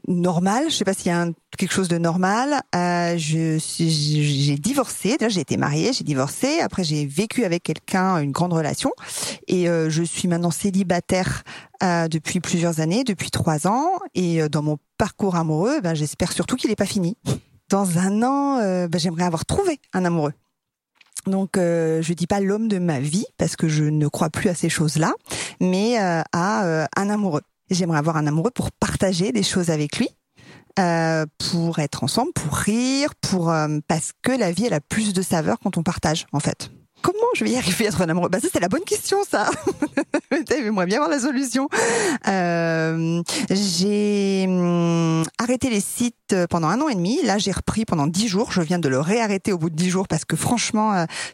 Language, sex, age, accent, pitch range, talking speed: French, female, 40-59, French, 165-215 Hz, 205 wpm